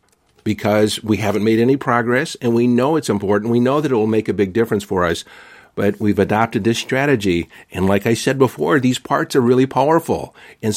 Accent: American